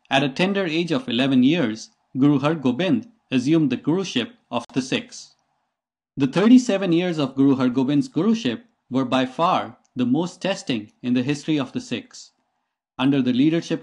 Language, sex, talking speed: English, male, 160 wpm